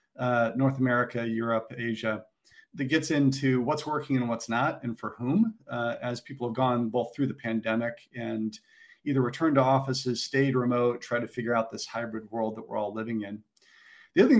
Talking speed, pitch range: 195 wpm, 115-135 Hz